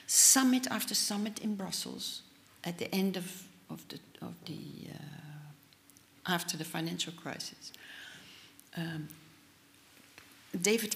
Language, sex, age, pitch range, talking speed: German, female, 60-79, 180-245 Hz, 105 wpm